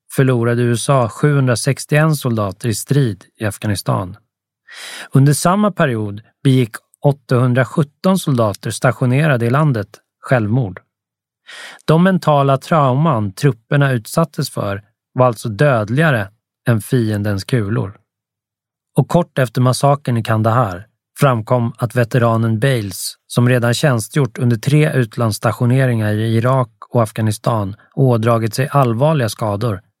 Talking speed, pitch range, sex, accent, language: 110 wpm, 110-140 Hz, male, native, Swedish